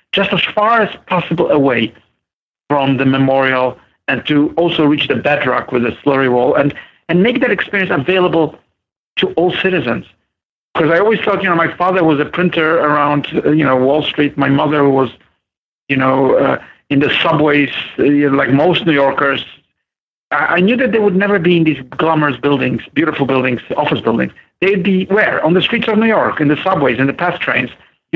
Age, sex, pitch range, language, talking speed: 50-69, male, 135-170 Hz, English, 195 wpm